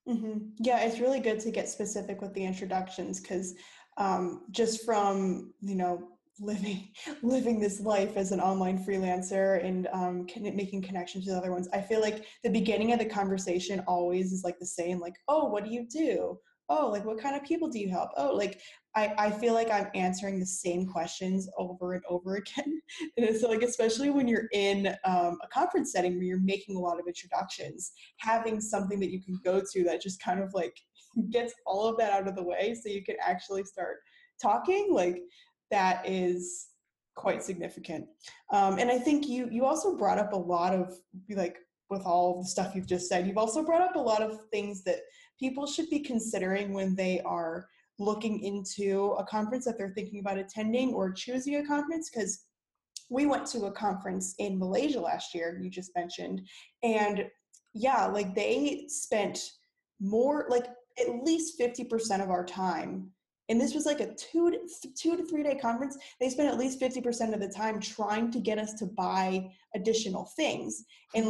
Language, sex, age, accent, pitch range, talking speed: English, female, 10-29, American, 185-245 Hz, 190 wpm